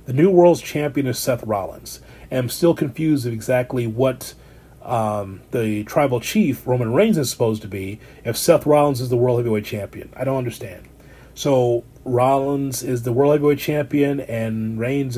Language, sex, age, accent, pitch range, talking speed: English, male, 30-49, American, 120-145 Hz, 170 wpm